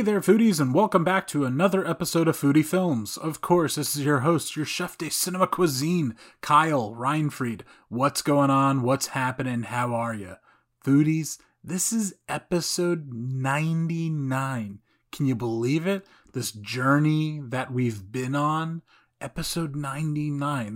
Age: 30-49